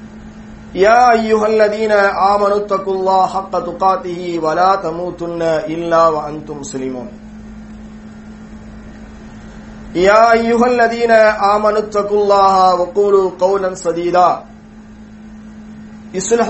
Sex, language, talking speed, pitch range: male, English, 80 wpm, 175-215 Hz